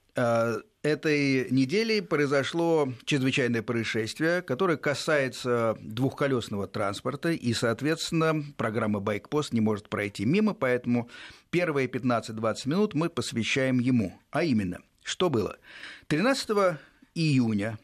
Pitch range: 110-150 Hz